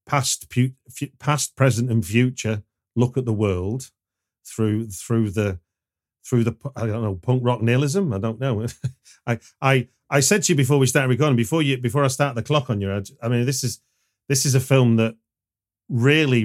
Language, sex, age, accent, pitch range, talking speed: English, male, 40-59, British, 100-130 Hz, 195 wpm